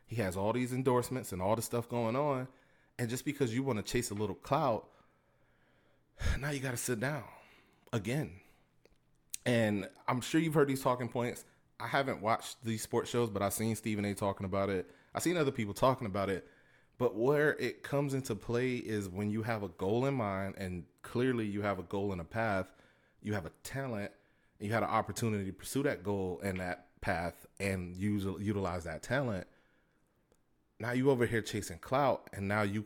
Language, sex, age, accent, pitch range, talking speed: English, male, 30-49, American, 95-120 Hz, 195 wpm